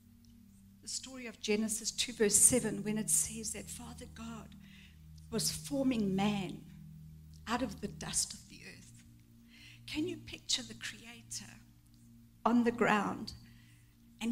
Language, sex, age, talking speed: English, female, 60-79, 130 wpm